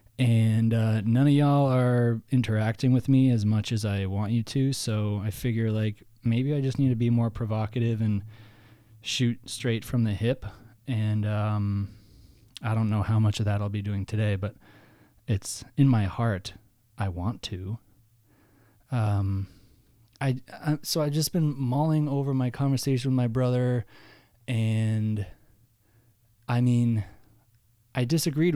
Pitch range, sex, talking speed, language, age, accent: 105-120 Hz, male, 155 wpm, English, 20-39, American